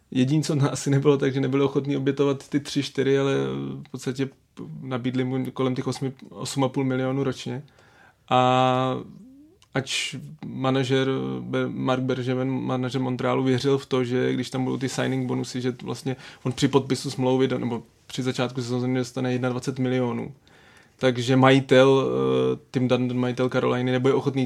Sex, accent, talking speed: male, native, 150 wpm